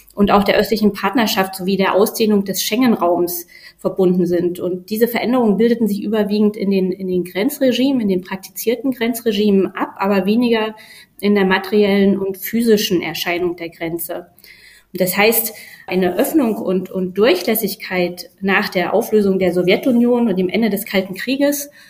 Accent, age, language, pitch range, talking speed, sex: German, 20-39, German, 190-220 Hz, 155 wpm, female